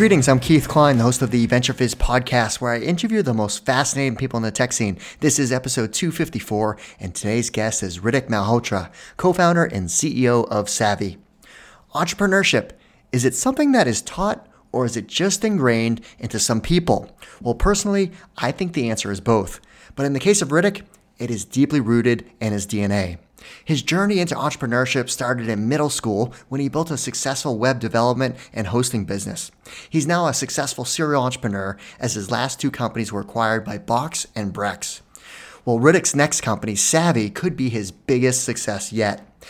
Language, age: English, 30-49